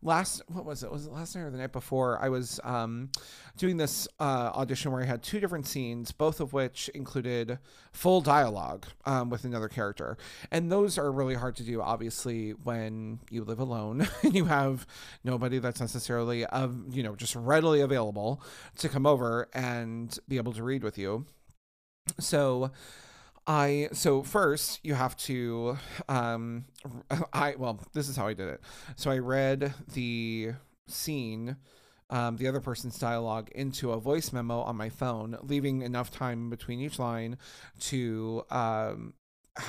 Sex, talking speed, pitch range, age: male, 170 wpm, 115-140 Hz, 40-59